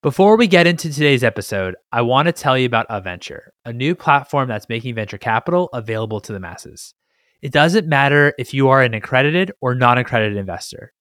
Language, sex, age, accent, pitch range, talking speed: English, male, 20-39, American, 115-155 Hz, 190 wpm